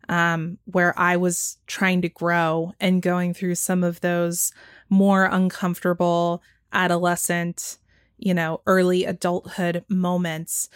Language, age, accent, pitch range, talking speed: English, 20-39, American, 175-190 Hz, 115 wpm